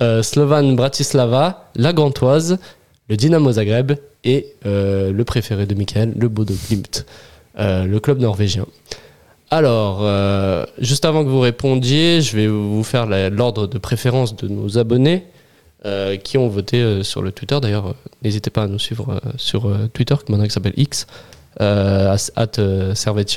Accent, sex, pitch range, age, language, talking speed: French, male, 105-135 Hz, 20-39, French, 155 wpm